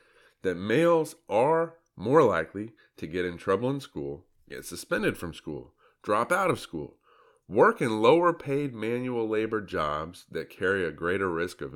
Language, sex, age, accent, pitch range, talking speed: English, male, 30-49, American, 90-135 Hz, 165 wpm